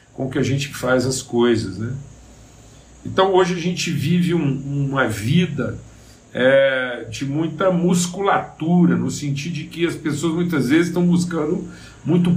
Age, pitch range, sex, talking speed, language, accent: 50-69, 130-175 Hz, male, 135 wpm, Portuguese, Brazilian